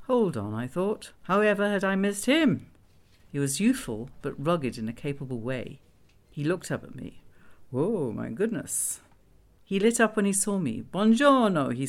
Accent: British